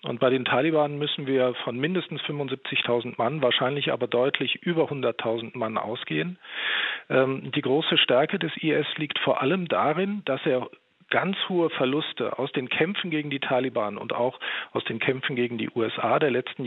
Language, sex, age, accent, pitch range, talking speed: German, male, 40-59, German, 125-155 Hz, 175 wpm